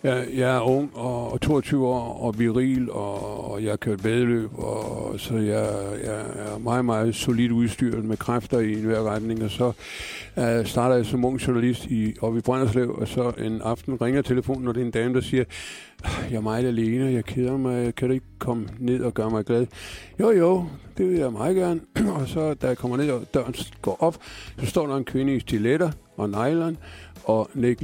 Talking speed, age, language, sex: 205 wpm, 50-69, Danish, male